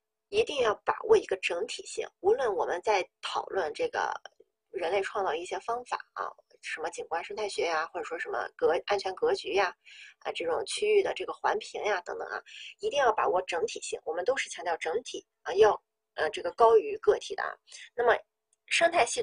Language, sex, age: Chinese, female, 20-39